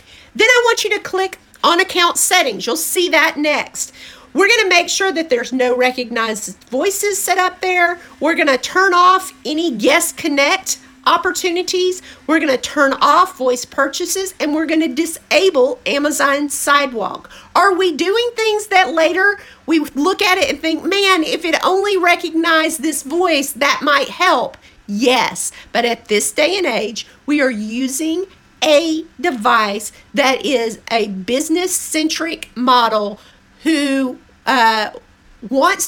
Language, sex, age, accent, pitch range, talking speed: English, female, 50-69, American, 260-360 Hz, 150 wpm